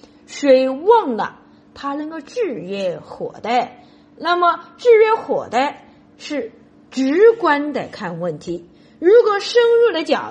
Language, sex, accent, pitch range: Chinese, female, native, 255-425 Hz